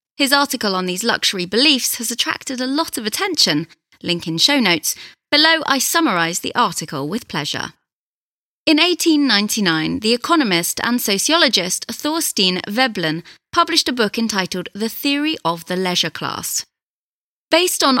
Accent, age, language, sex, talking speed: British, 30-49, English, female, 145 wpm